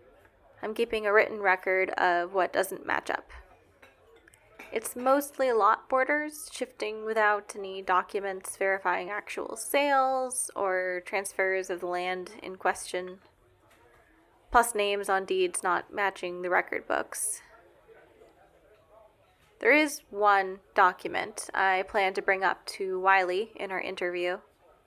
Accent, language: American, English